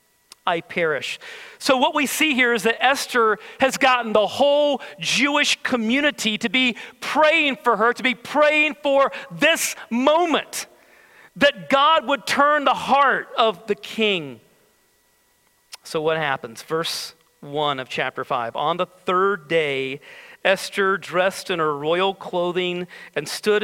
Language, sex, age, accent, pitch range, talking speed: English, male, 40-59, American, 185-275 Hz, 140 wpm